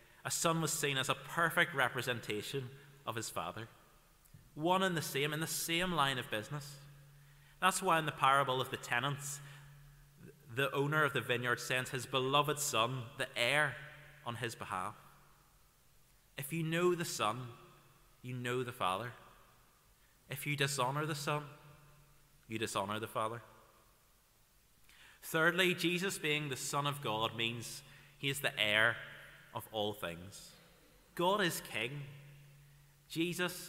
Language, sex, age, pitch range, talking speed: English, male, 30-49, 125-150 Hz, 145 wpm